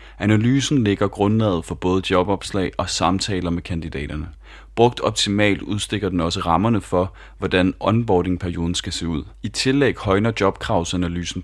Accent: native